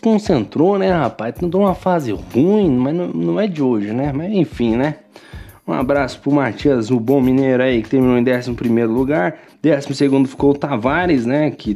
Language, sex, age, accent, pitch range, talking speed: Portuguese, male, 20-39, Brazilian, 125-155 Hz, 195 wpm